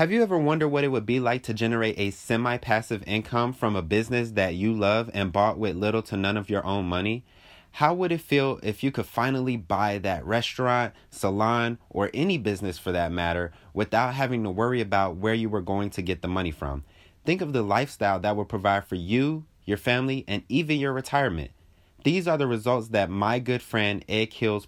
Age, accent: 30-49, American